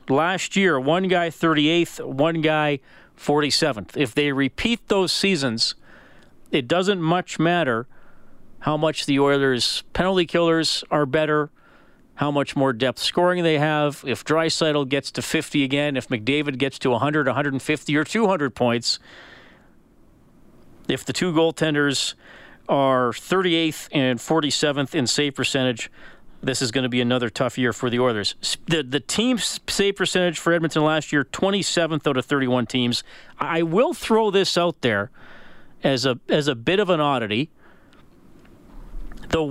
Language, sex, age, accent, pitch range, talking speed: English, male, 40-59, American, 135-170 Hz, 150 wpm